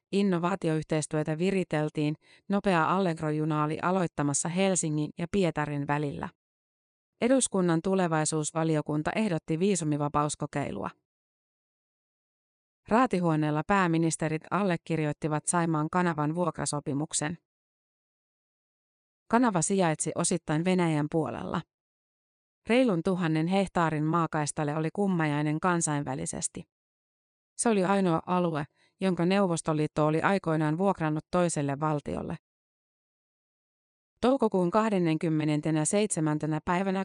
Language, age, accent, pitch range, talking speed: Finnish, 30-49, native, 155-185 Hz, 75 wpm